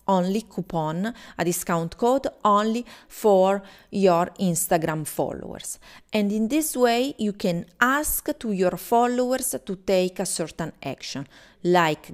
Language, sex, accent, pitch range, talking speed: English, female, Italian, 175-235 Hz, 130 wpm